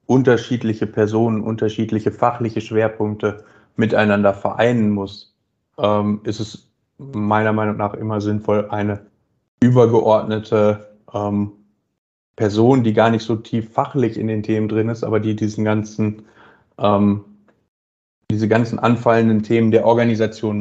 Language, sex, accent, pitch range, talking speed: English, male, German, 105-115 Hz, 115 wpm